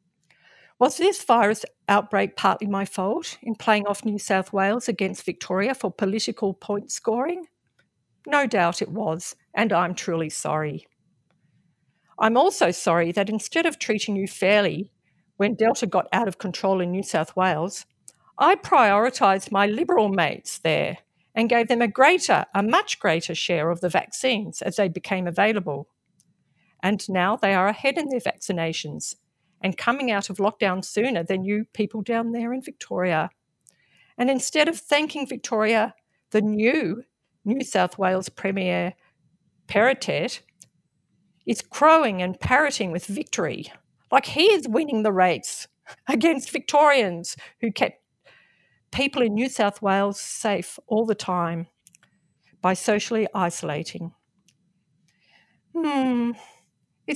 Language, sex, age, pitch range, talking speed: English, female, 50-69, 180-235 Hz, 140 wpm